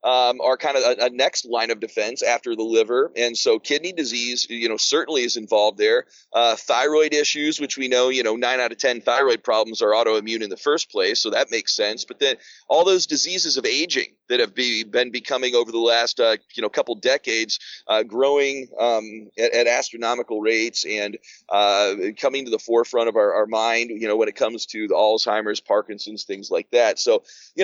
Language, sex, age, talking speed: English, male, 30-49, 215 wpm